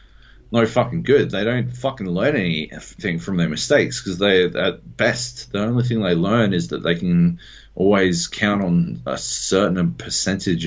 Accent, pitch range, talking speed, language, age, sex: Australian, 90-125 Hz, 170 wpm, English, 30-49, male